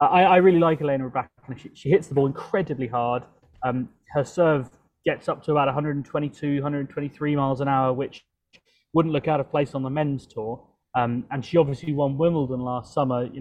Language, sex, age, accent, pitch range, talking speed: English, male, 20-39, British, 130-155 Hz, 195 wpm